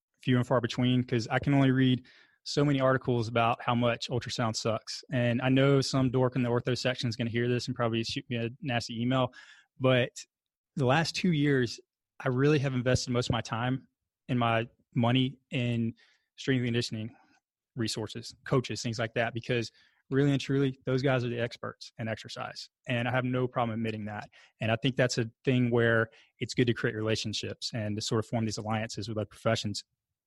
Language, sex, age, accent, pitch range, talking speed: English, male, 20-39, American, 115-135 Hz, 200 wpm